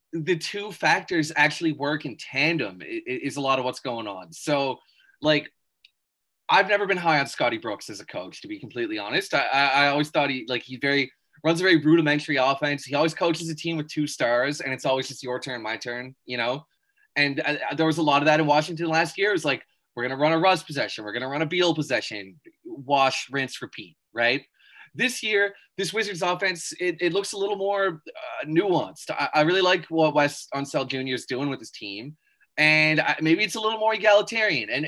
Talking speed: 220 wpm